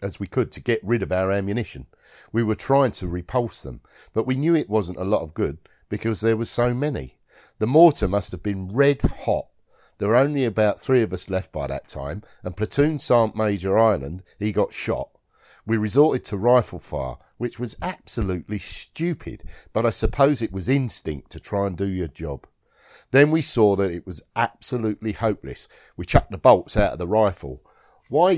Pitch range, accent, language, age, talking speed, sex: 95-130 Hz, British, English, 50-69, 195 wpm, male